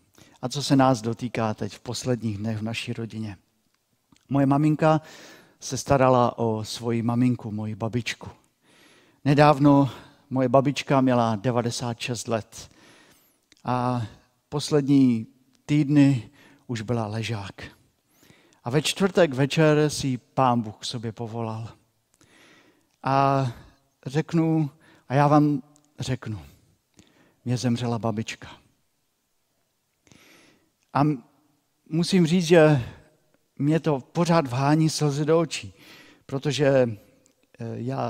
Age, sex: 50-69, male